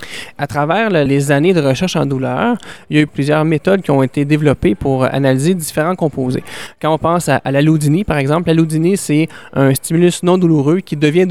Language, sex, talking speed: French, male, 205 wpm